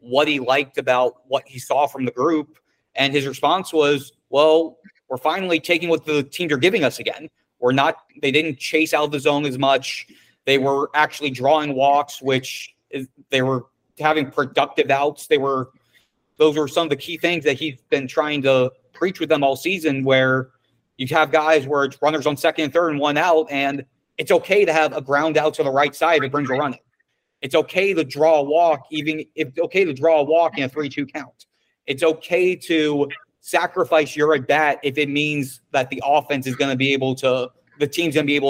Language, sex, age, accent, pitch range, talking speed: English, male, 30-49, American, 135-160 Hz, 215 wpm